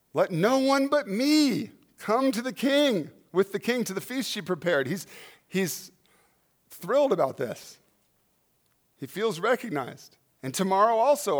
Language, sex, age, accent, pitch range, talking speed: English, male, 40-59, American, 140-215 Hz, 145 wpm